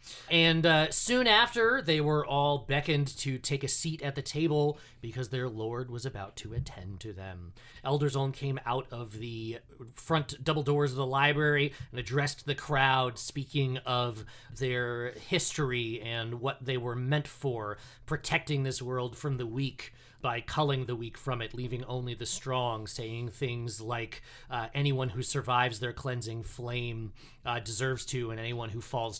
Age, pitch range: 30-49, 115-145 Hz